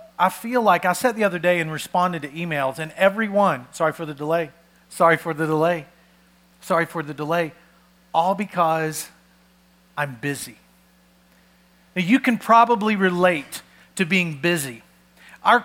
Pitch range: 155-230 Hz